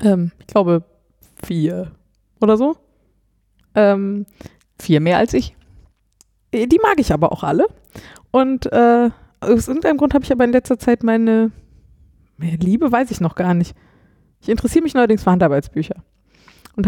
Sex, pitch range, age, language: female, 185-230 Hz, 20-39, German